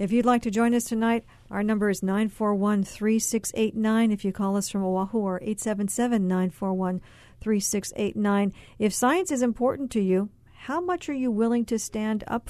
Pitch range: 195-230 Hz